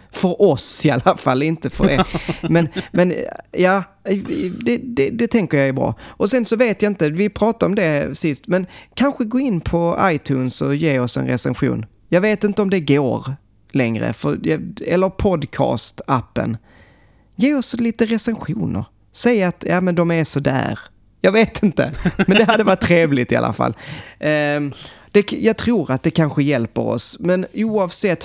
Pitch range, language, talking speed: 145-205 Hz, Swedish, 180 wpm